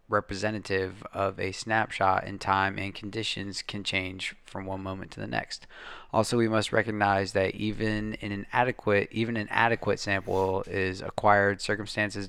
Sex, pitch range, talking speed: male, 95-110 Hz, 155 wpm